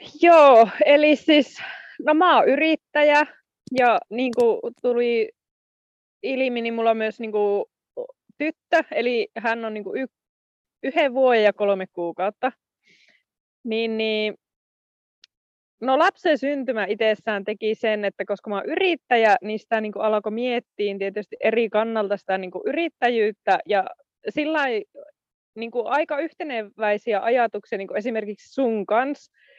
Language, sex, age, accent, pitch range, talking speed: Finnish, female, 20-39, native, 195-245 Hz, 120 wpm